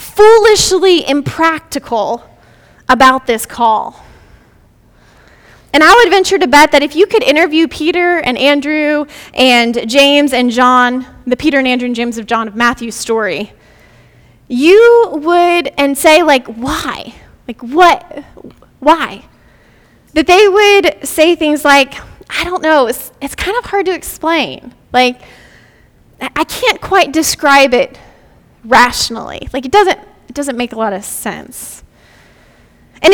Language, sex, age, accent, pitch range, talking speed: English, female, 20-39, American, 255-360 Hz, 140 wpm